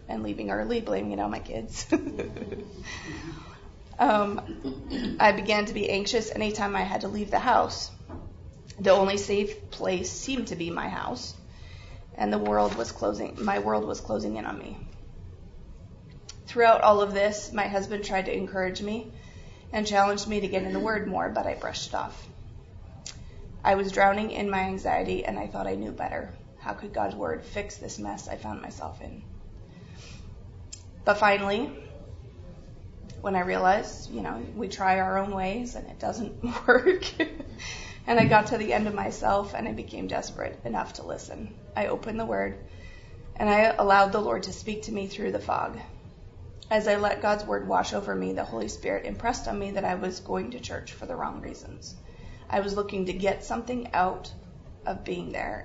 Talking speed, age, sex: 185 wpm, 20-39, female